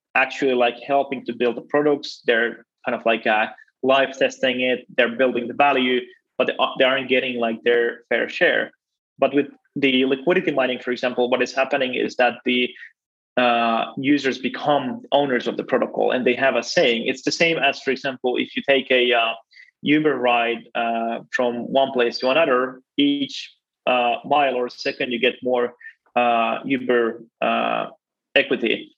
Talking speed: 170 wpm